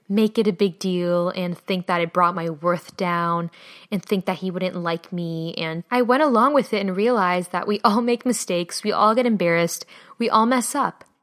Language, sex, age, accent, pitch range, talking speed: English, female, 10-29, American, 195-250 Hz, 220 wpm